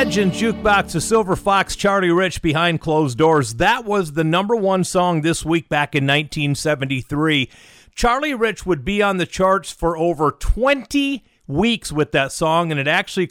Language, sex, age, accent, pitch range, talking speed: English, male, 40-59, American, 140-185 Hz, 170 wpm